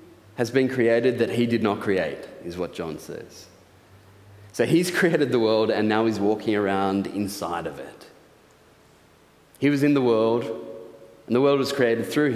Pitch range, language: 100-130 Hz, English